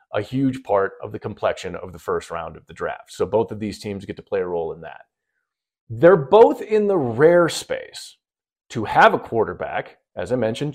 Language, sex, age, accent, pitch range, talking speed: English, male, 40-59, American, 105-175 Hz, 210 wpm